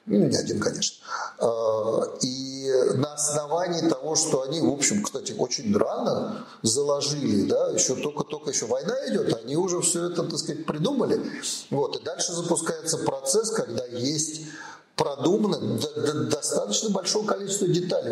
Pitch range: 145-215 Hz